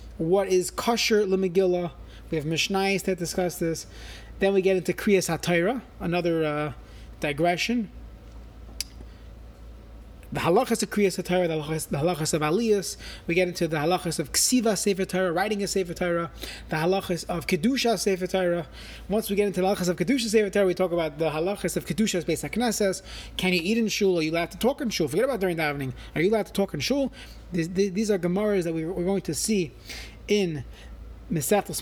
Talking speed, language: 190 wpm, English